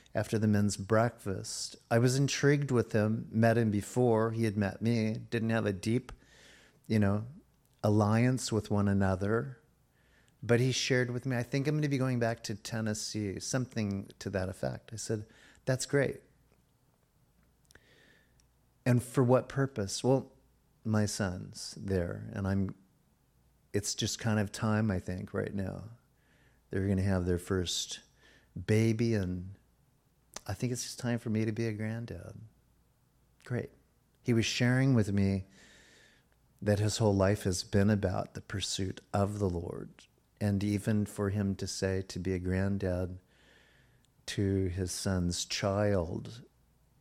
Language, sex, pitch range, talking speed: English, male, 95-115 Hz, 150 wpm